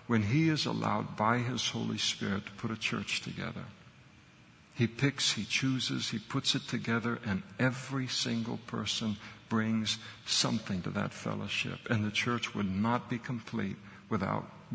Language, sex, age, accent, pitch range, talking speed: English, male, 60-79, American, 110-125 Hz, 155 wpm